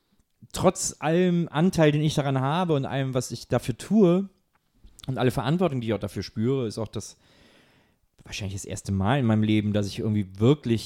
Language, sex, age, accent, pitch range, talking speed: German, male, 40-59, German, 110-150 Hz, 195 wpm